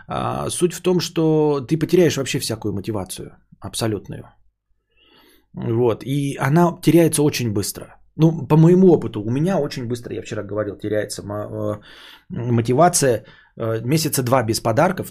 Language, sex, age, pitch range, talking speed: Bulgarian, male, 20-39, 110-145 Hz, 135 wpm